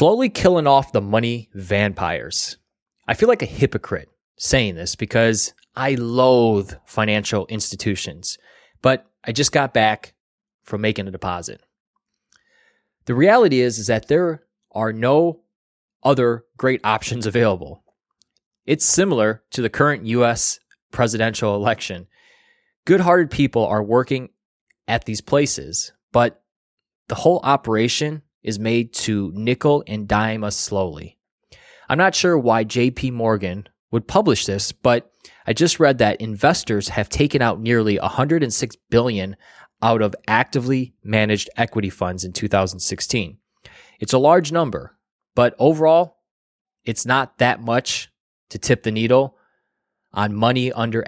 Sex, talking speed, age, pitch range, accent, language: male, 130 wpm, 20-39, 105-140 Hz, American, English